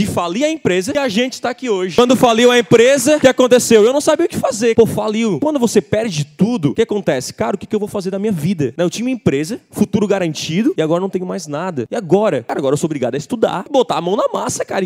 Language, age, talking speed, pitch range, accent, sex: Portuguese, 20-39, 280 wpm, 190-230 Hz, Brazilian, male